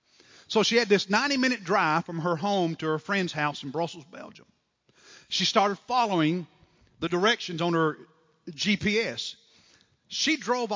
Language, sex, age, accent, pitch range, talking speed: English, male, 50-69, American, 170-230 Hz, 145 wpm